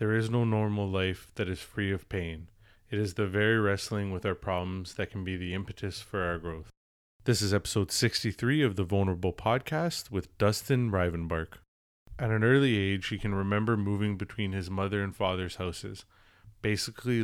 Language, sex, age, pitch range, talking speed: English, male, 30-49, 95-105 Hz, 180 wpm